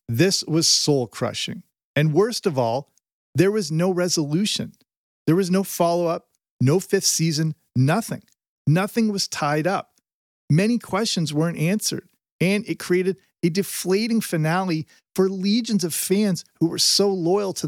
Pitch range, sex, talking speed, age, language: 150-195 Hz, male, 145 wpm, 40-59, English